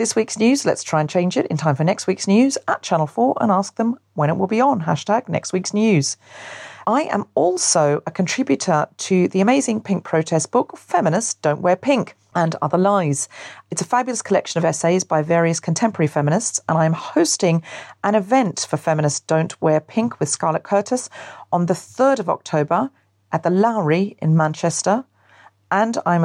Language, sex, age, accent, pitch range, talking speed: English, female, 40-59, British, 155-200 Hz, 190 wpm